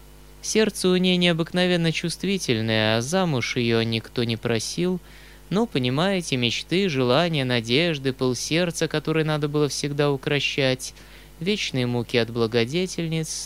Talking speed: 115 wpm